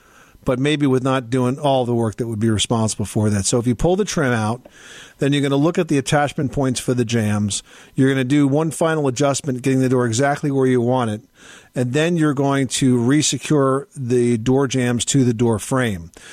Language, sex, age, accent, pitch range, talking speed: English, male, 50-69, American, 120-145 Hz, 225 wpm